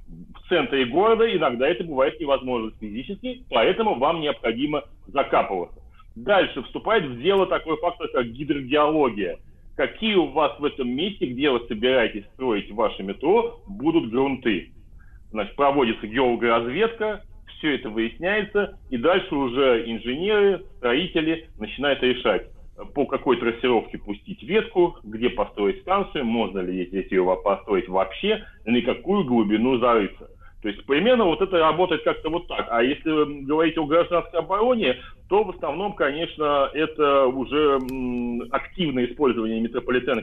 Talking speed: 135 wpm